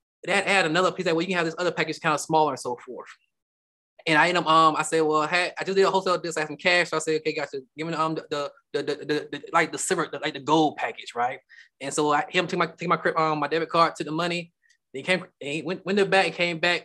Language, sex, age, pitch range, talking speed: English, male, 20-39, 155-190 Hz, 310 wpm